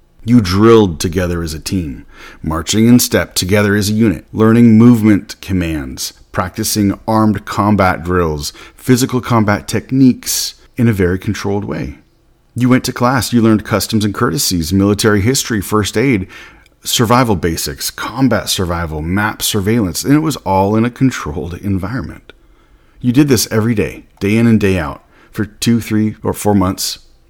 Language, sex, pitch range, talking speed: English, male, 90-115 Hz, 155 wpm